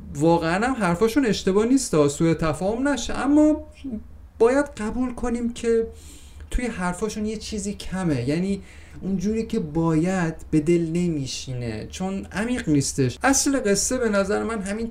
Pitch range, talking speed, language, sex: 130-205 Hz, 135 wpm, Persian, male